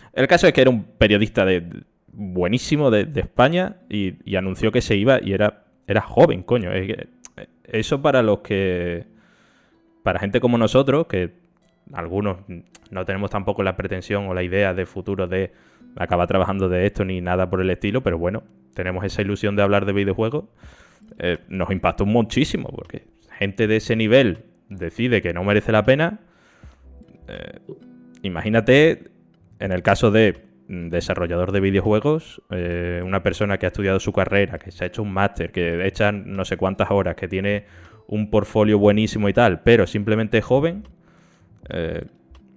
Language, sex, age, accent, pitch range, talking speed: Spanish, male, 20-39, Spanish, 90-110 Hz, 170 wpm